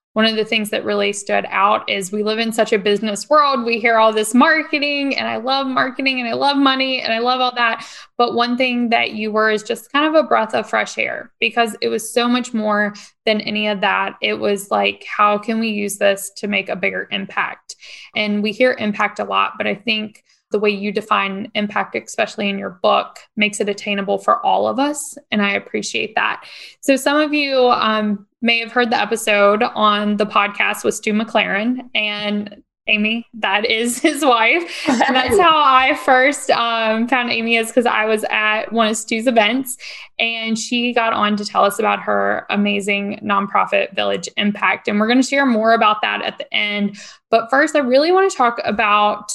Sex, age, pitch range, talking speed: female, 10-29, 210-250 Hz, 205 wpm